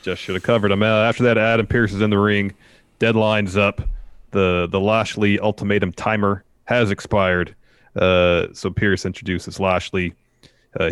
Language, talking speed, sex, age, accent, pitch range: English, 155 wpm, male, 30-49, American, 90-105 Hz